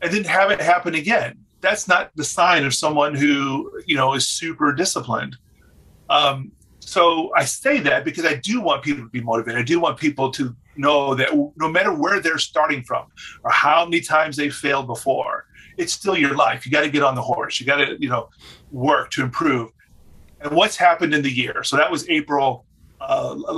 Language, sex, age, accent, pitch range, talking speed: English, male, 30-49, American, 130-160 Hz, 205 wpm